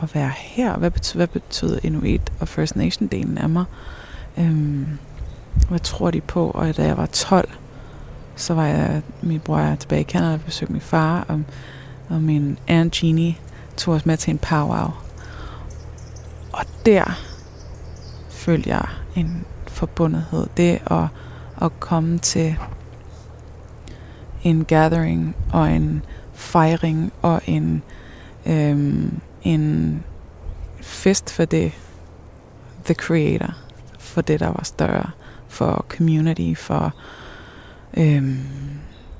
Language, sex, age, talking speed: Danish, female, 20-39, 125 wpm